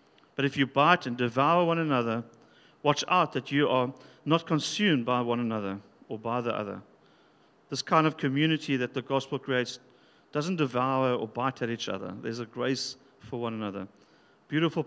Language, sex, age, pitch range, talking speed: English, male, 50-69, 120-145 Hz, 180 wpm